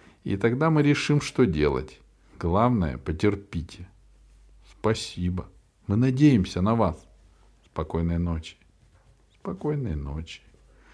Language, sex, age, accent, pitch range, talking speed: Russian, male, 50-69, native, 85-120 Hz, 95 wpm